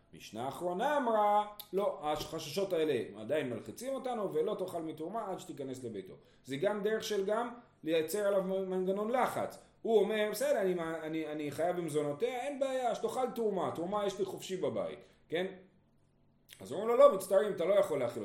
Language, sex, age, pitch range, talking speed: Hebrew, male, 30-49, 155-225 Hz, 170 wpm